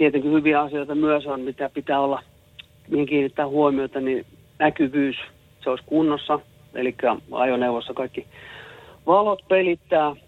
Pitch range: 130-150 Hz